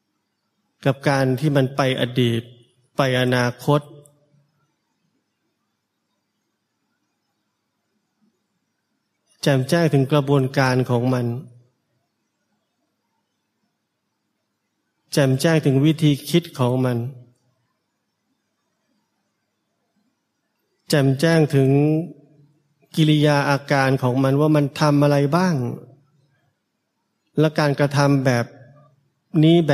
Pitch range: 125-150 Hz